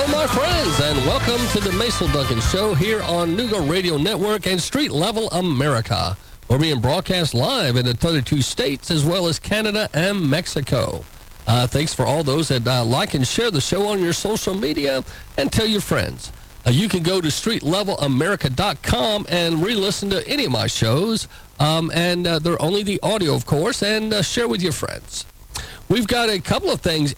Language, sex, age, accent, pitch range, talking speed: English, male, 50-69, American, 140-195 Hz, 190 wpm